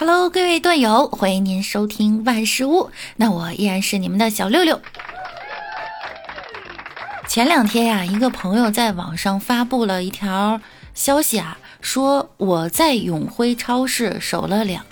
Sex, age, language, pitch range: female, 20-39, Chinese, 180-250 Hz